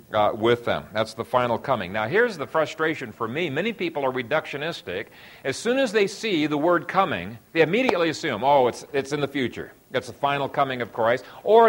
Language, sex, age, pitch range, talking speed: English, male, 50-69, 135-180 Hz, 210 wpm